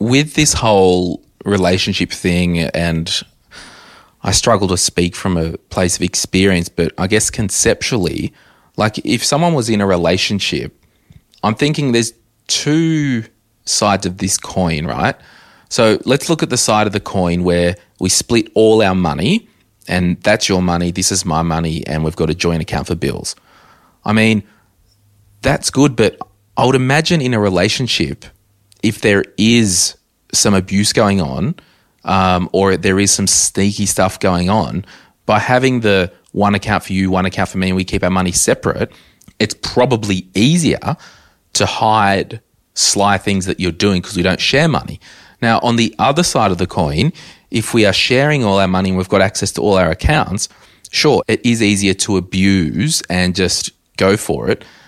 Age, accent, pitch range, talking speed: 30-49, Australian, 90-115 Hz, 175 wpm